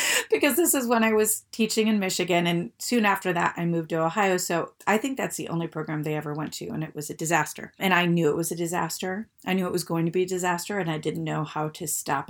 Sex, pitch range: female, 165-225 Hz